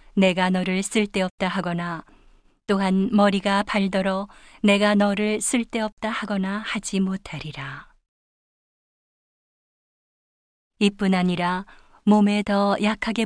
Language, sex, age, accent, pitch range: Korean, female, 40-59, native, 180-205 Hz